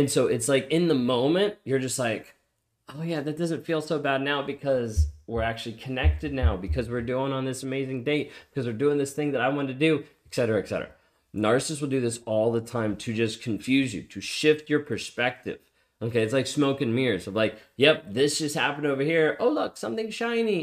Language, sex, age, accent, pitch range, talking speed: English, male, 20-39, American, 110-145 Hz, 225 wpm